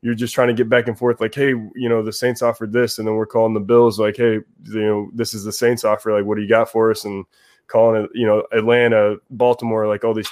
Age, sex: 20-39, male